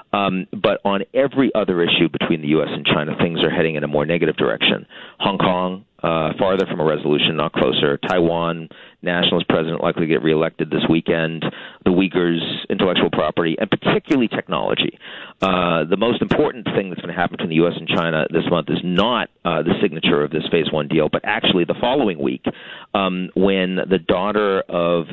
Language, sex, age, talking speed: English, male, 40-59, 190 wpm